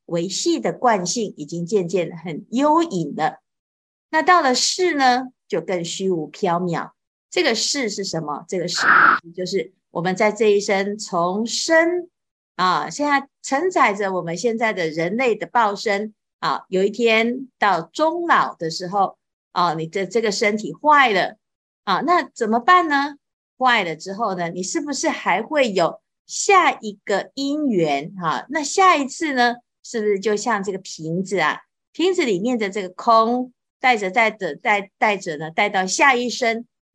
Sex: female